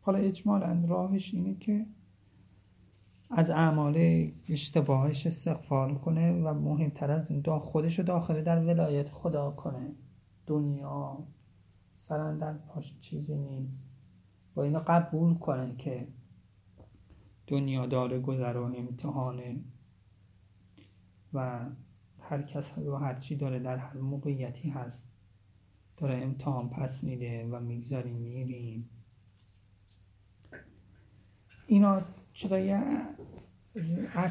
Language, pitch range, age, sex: Persian, 120-165 Hz, 30-49, male